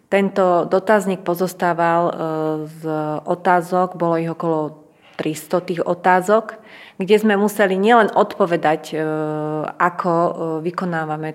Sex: female